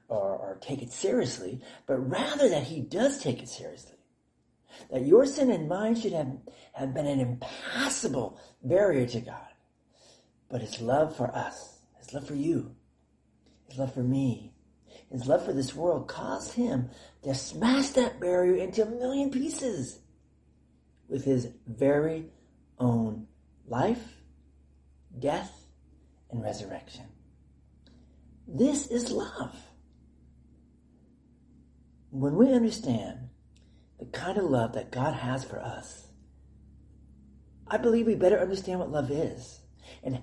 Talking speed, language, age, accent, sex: 130 wpm, Ukrainian, 40-59, American, male